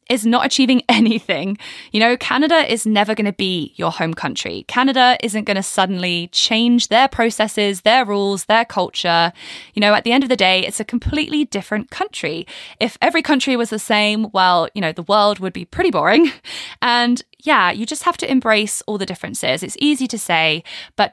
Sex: female